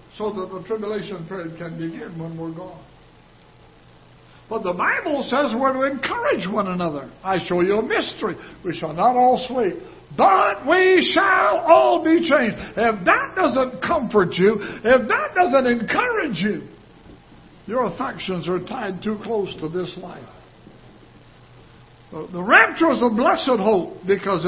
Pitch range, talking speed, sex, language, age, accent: 190-270 Hz, 150 wpm, male, English, 60-79, American